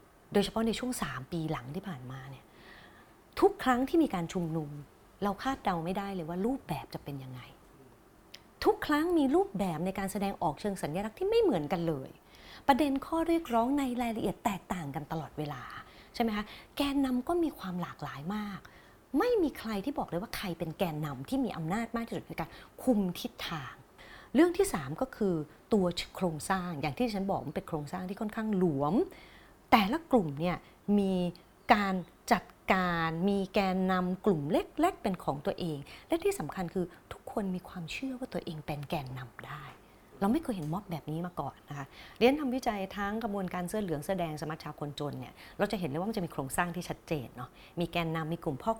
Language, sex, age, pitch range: Thai, female, 30-49, 155-225 Hz